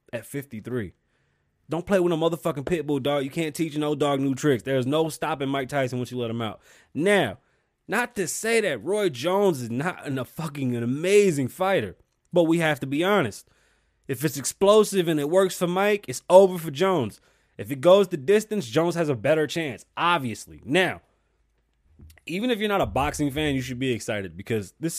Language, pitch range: English, 100-150 Hz